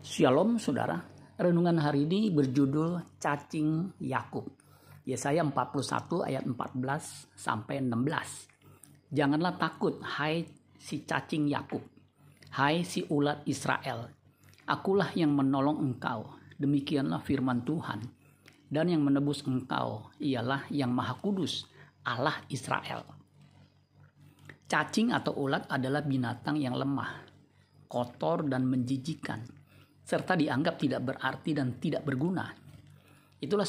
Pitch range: 130-155 Hz